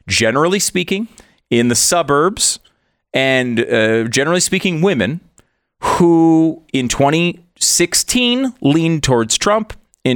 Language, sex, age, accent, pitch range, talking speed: English, male, 30-49, American, 115-165 Hz, 100 wpm